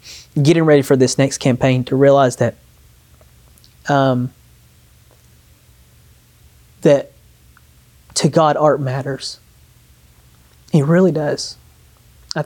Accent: American